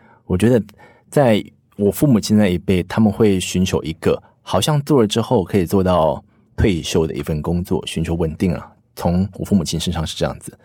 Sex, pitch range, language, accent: male, 90-110 Hz, Chinese, native